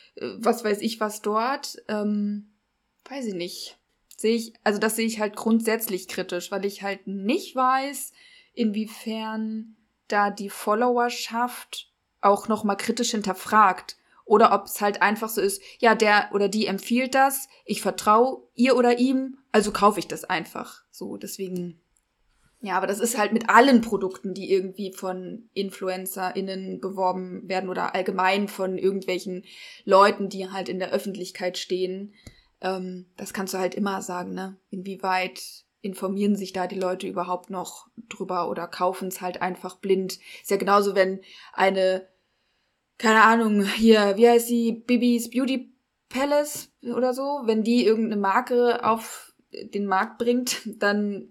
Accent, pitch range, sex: German, 190-230 Hz, female